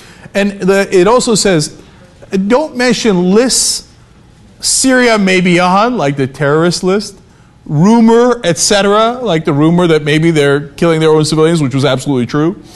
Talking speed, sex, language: 155 wpm, male, English